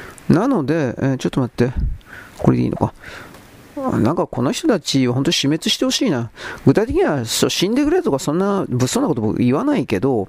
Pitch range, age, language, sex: 130-195 Hz, 40-59, Japanese, male